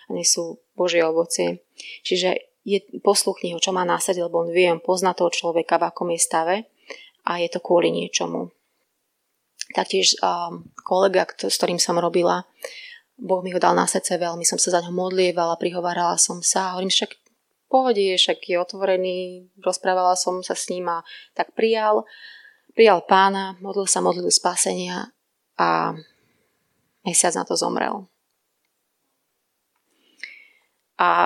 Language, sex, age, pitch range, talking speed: Slovak, female, 20-39, 175-200 Hz, 140 wpm